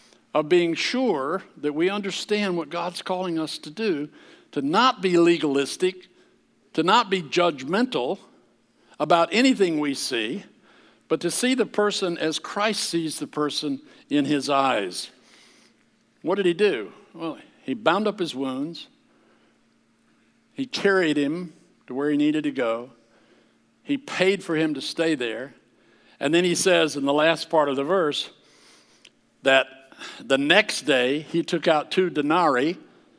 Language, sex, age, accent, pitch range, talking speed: English, male, 60-79, American, 140-190 Hz, 150 wpm